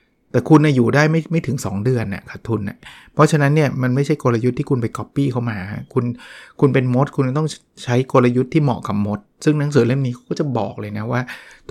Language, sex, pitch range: Thai, male, 120-150 Hz